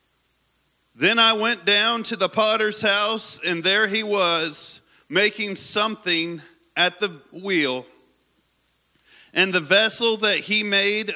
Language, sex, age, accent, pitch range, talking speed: English, male, 40-59, American, 180-225 Hz, 125 wpm